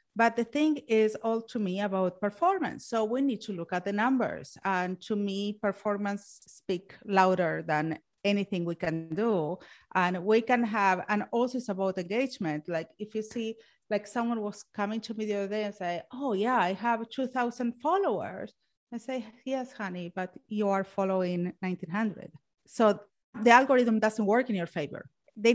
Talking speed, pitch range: 180 wpm, 180-235 Hz